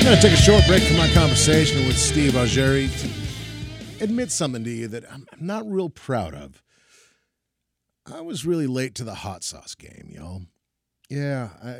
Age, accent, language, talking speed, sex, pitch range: 40-59, American, English, 185 wpm, male, 110-150 Hz